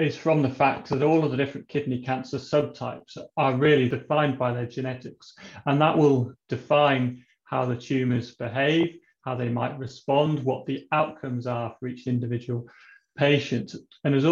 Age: 30-49